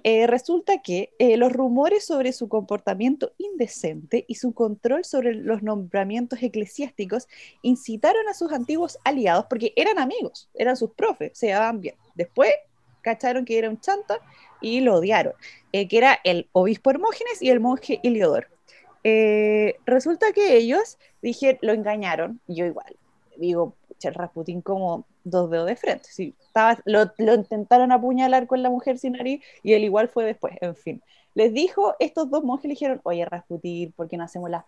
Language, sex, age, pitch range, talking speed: Spanish, female, 20-39, 205-275 Hz, 170 wpm